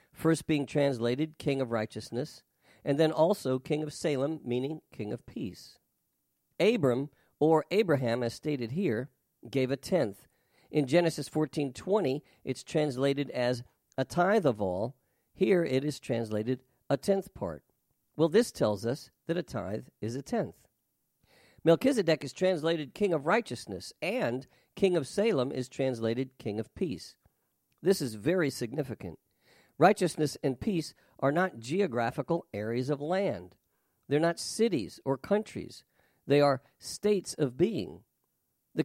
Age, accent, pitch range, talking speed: 50-69, American, 130-175 Hz, 140 wpm